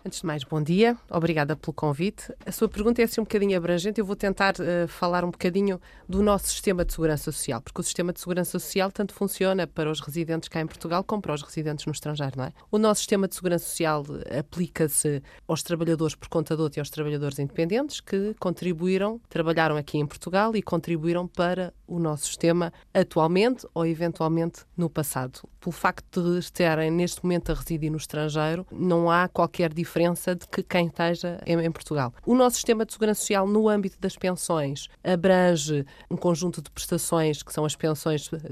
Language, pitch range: Portuguese, 155-190 Hz